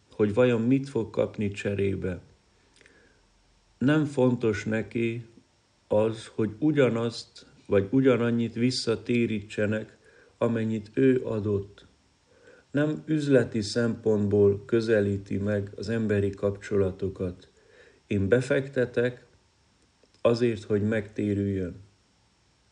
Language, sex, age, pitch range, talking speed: Hungarian, male, 50-69, 100-120 Hz, 80 wpm